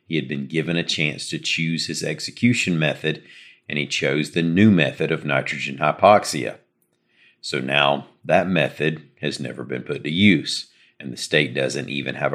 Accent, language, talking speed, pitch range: American, English, 175 wpm, 70-85 Hz